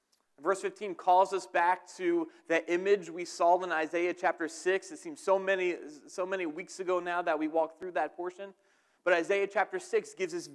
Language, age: English, 30-49